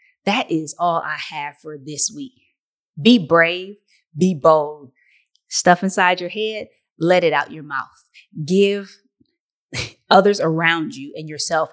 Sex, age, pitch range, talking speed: female, 20-39, 150-195 Hz, 140 wpm